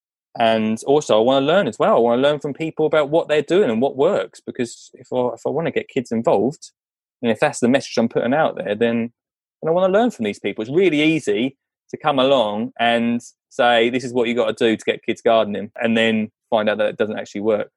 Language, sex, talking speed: English, male, 255 wpm